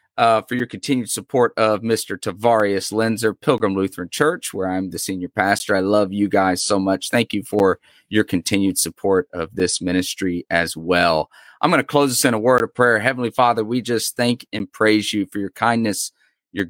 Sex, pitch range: male, 90-105 Hz